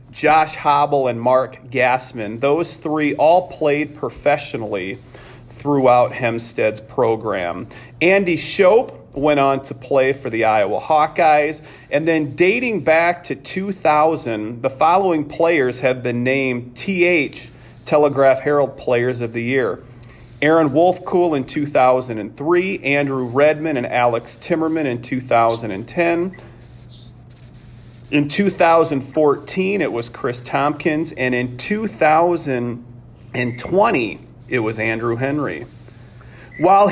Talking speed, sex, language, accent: 110 wpm, male, English, American